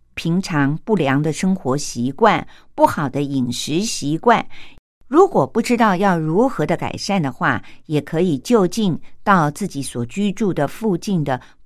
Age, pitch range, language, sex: 50-69, 145-220 Hz, Chinese, female